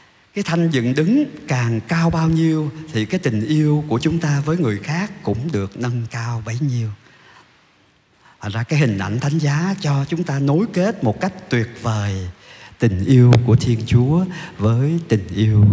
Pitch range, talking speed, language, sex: 105-150 Hz, 180 wpm, Vietnamese, male